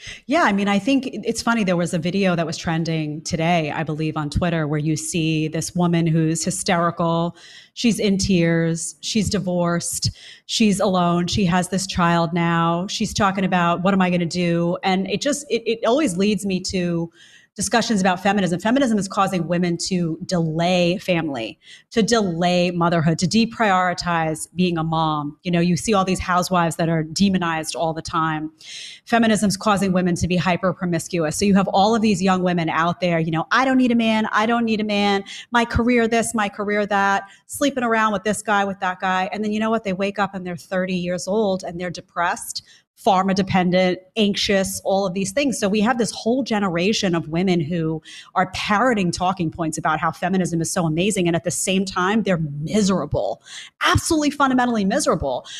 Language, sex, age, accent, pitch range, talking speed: English, female, 30-49, American, 170-205 Hz, 195 wpm